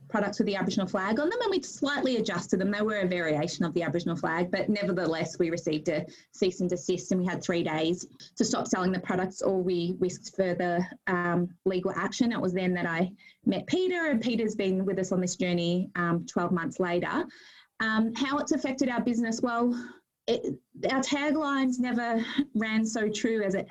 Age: 20-39